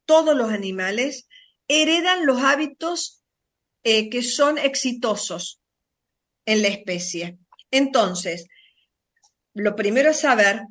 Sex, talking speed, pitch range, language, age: female, 100 wpm, 200-285 Hz, Spanish, 50-69